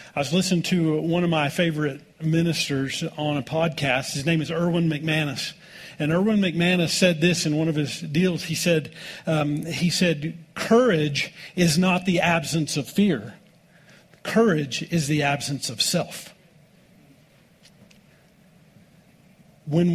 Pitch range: 155-185 Hz